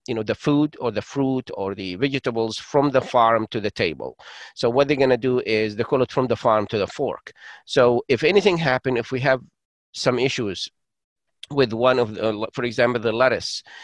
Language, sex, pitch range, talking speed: English, male, 110-140 Hz, 215 wpm